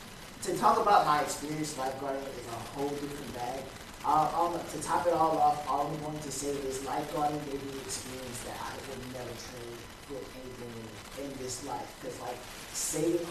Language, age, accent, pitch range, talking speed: English, 30-49, American, 125-155 Hz, 180 wpm